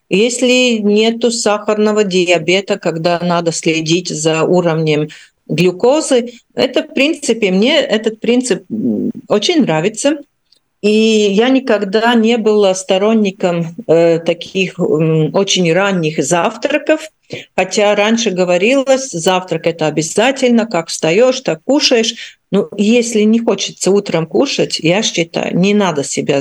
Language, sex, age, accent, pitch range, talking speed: Russian, female, 50-69, native, 175-230 Hz, 115 wpm